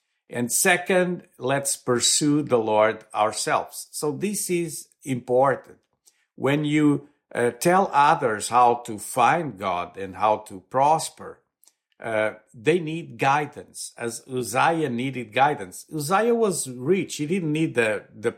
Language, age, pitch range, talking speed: English, 50-69, 120-165 Hz, 130 wpm